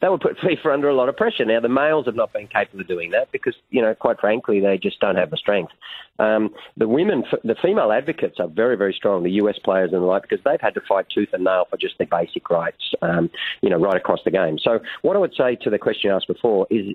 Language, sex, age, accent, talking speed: English, male, 40-59, Australian, 275 wpm